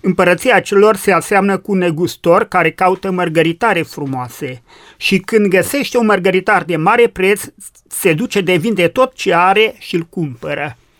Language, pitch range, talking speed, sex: Romanian, 160-205 Hz, 160 wpm, male